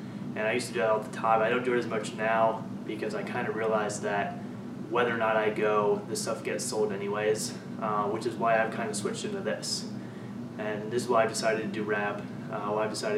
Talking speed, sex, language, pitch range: 250 wpm, male, English, 110-130 Hz